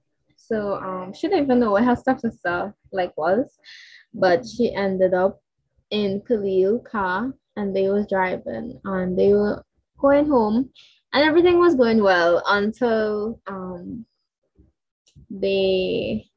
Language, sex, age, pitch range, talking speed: English, female, 10-29, 190-235 Hz, 130 wpm